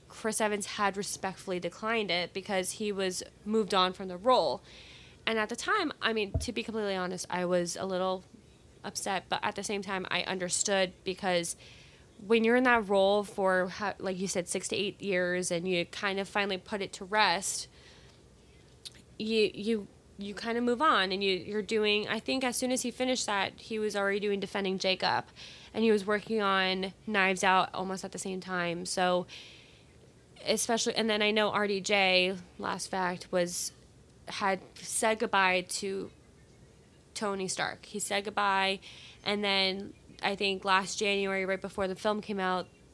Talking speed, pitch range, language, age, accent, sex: 175 wpm, 185-210 Hz, English, 20-39, American, female